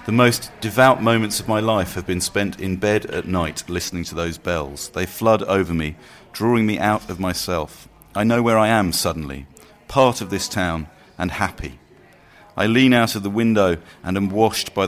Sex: male